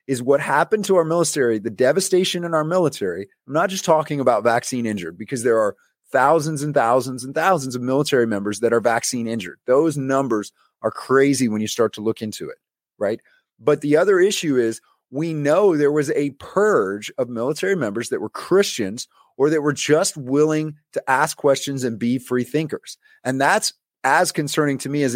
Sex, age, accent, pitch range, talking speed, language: male, 30-49, American, 125-155 Hz, 195 wpm, English